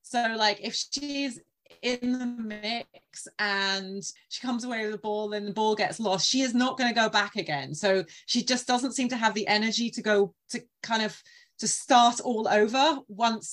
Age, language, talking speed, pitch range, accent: 30-49, English, 205 wpm, 195-235 Hz, British